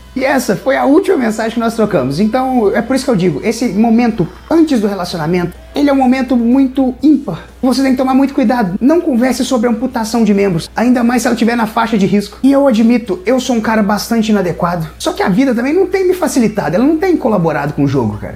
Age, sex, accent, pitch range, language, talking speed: 30-49, male, Brazilian, 210-265 Hz, Portuguese, 240 wpm